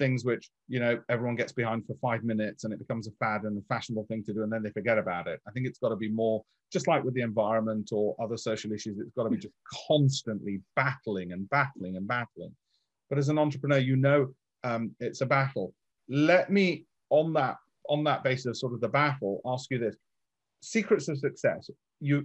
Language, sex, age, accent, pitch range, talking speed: English, male, 40-59, British, 115-145 Hz, 220 wpm